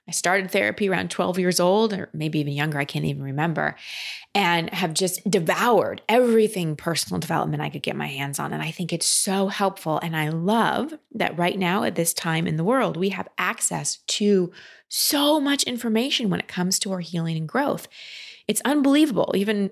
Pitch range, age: 165-220 Hz, 20-39